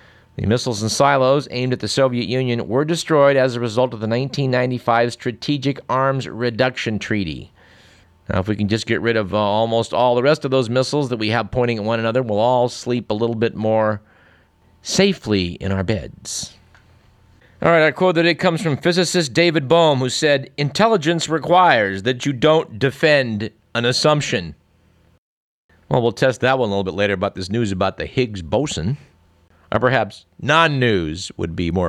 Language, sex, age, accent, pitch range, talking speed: English, male, 50-69, American, 105-145 Hz, 185 wpm